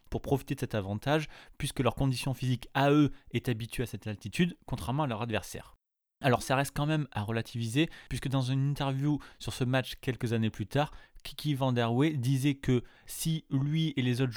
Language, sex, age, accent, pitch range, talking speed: French, male, 20-39, French, 120-150 Hz, 205 wpm